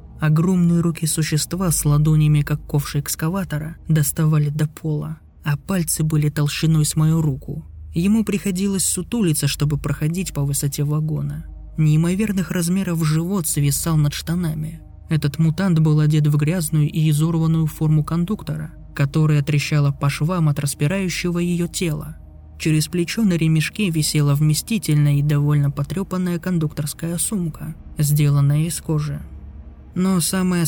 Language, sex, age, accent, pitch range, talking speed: Russian, male, 20-39, native, 150-170 Hz, 130 wpm